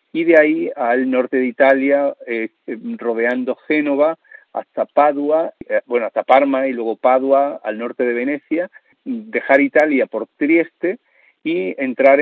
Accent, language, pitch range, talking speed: Spanish, Spanish, 120-160 Hz, 140 wpm